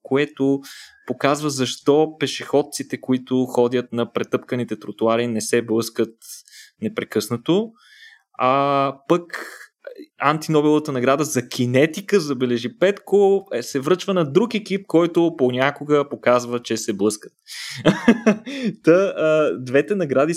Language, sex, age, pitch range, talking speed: Bulgarian, male, 20-39, 115-150 Hz, 105 wpm